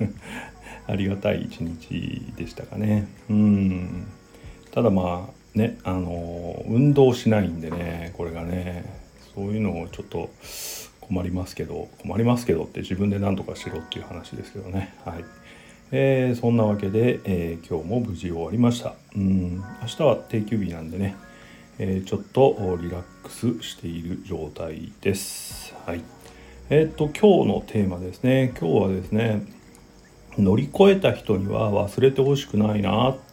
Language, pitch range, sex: Japanese, 90-115 Hz, male